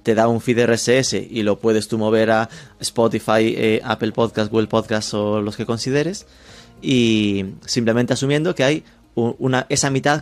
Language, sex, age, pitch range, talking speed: Spanish, male, 30-49, 115-155 Hz, 165 wpm